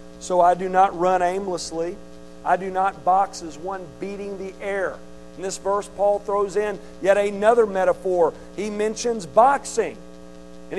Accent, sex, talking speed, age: American, male, 155 wpm, 50-69